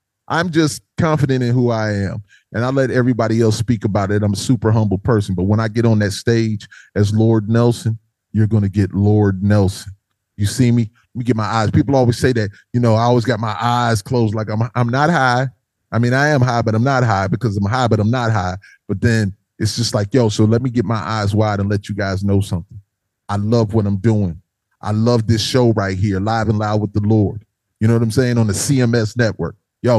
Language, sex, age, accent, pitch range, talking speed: English, male, 30-49, American, 105-125 Hz, 245 wpm